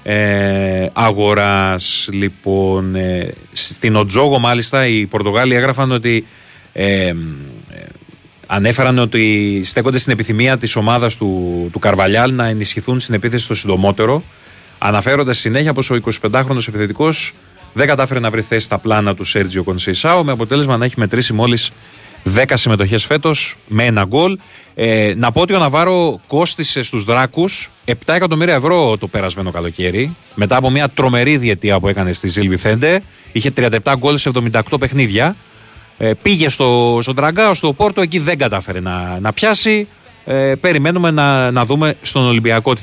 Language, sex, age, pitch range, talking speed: Greek, male, 30-49, 105-140 Hz, 145 wpm